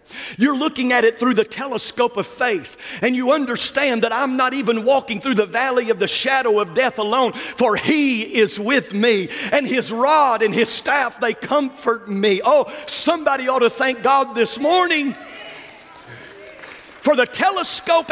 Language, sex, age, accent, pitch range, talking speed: English, male, 50-69, American, 225-280 Hz, 170 wpm